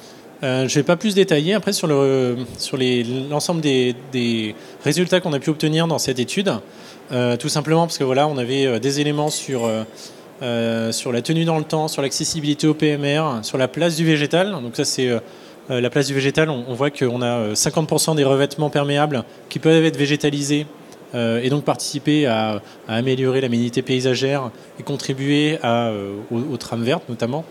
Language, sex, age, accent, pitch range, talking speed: French, male, 20-39, French, 125-155 Hz, 195 wpm